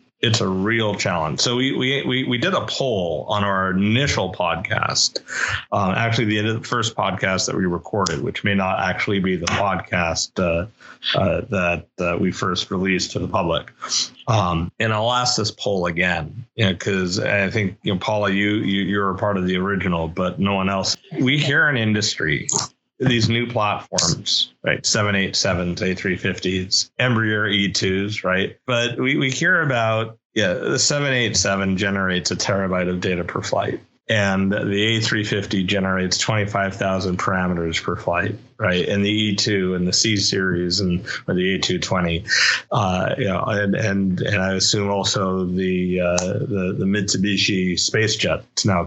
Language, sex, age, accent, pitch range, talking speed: English, male, 30-49, American, 95-110 Hz, 165 wpm